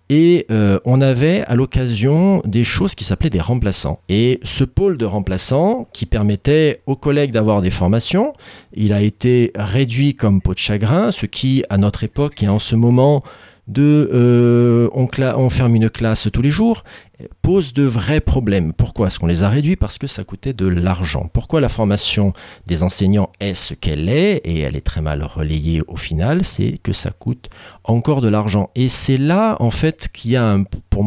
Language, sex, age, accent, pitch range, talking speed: French, male, 40-59, French, 95-130 Hz, 195 wpm